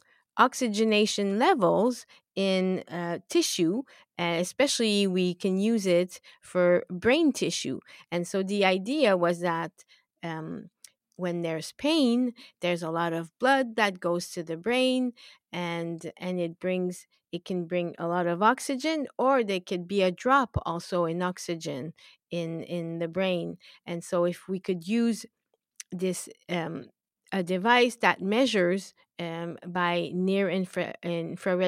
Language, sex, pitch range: English, female, 175-215 Hz